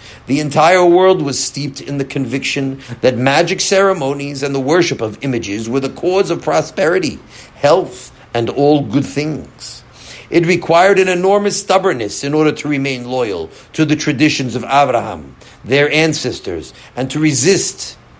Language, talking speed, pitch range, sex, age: English, 150 wpm, 125-175 Hz, male, 50-69